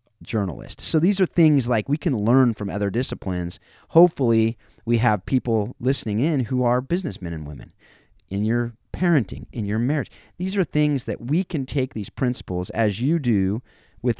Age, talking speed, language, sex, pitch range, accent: 30-49, 180 wpm, English, male, 95-125 Hz, American